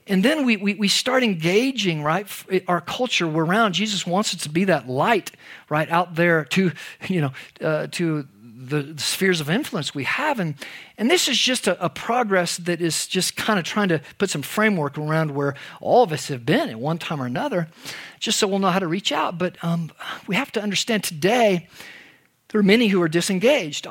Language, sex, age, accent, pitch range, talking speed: English, male, 50-69, American, 160-220 Hz, 215 wpm